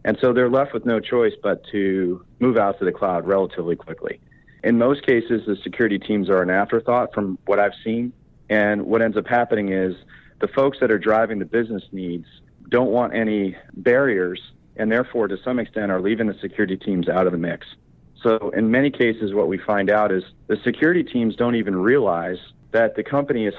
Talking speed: 205 wpm